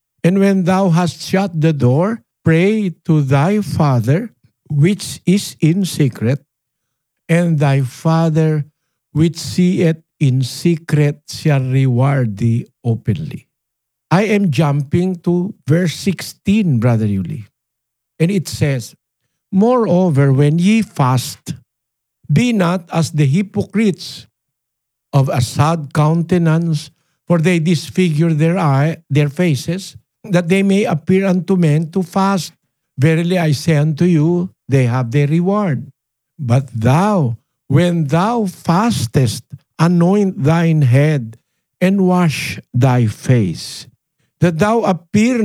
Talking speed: 120 wpm